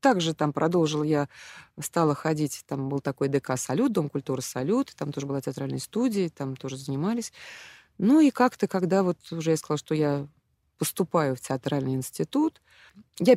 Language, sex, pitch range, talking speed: Russian, female, 145-195 Hz, 165 wpm